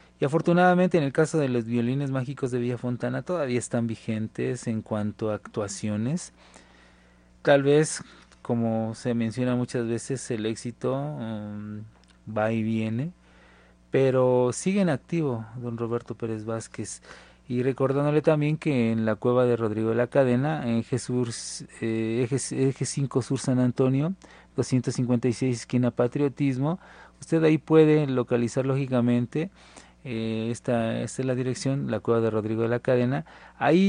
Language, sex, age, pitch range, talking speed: Spanish, male, 30-49, 115-140 Hz, 145 wpm